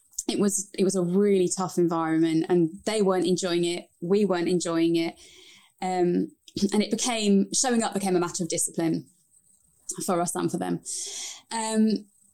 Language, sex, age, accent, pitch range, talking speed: English, female, 20-39, British, 175-210 Hz, 165 wpm